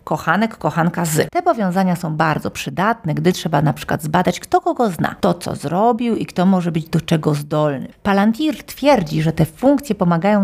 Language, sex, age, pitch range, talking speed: Polish, female, 40-59, 165-220 Hz, 185 wpm